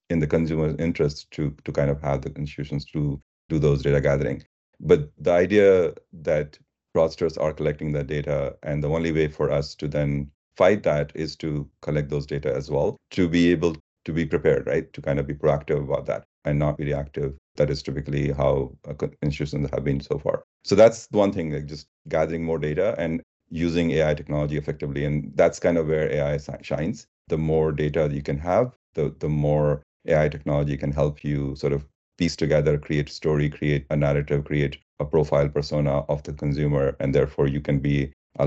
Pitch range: 70-80 Hz